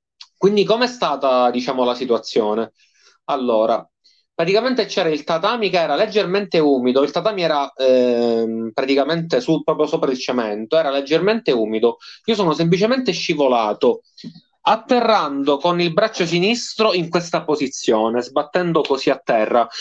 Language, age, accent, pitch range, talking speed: Italian, 30-49, native, 135-195 Hz, 135 wpm